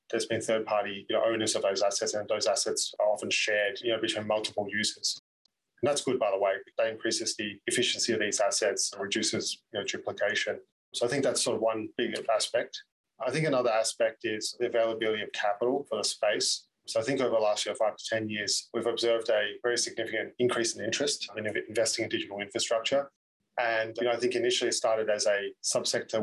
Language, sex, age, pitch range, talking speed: English, male, 20-39, 105-120 Hz, 215 wpm